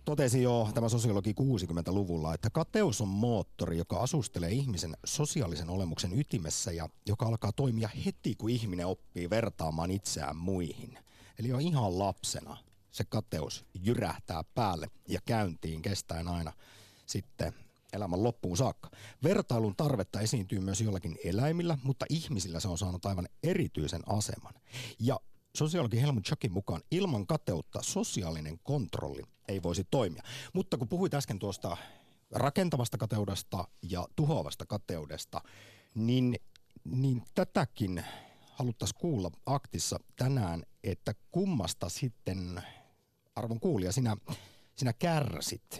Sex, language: male, Finnish